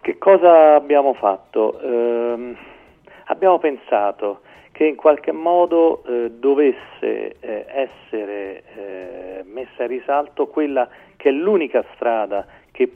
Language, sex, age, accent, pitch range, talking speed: Italian, male, 40-59, native, 110-165 Hz, 115 wpm